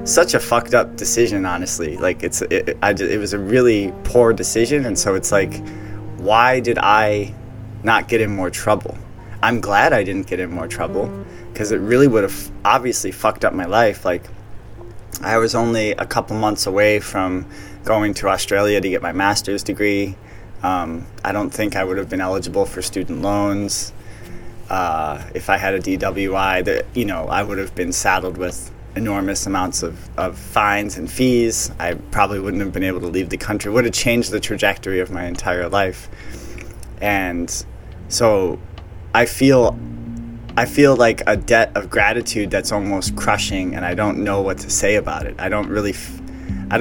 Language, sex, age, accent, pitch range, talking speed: English, male, 20-39, American, 95-115 Hz, 180 wpm